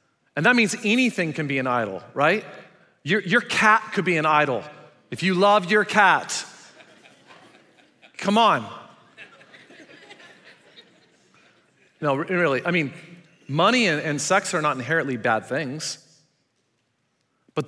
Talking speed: 125 wpm